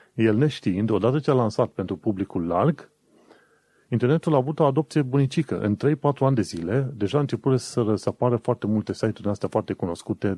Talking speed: 170 wpm